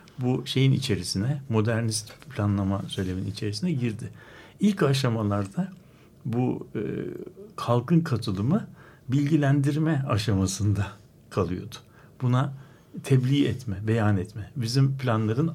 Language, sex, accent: Turkish, male, native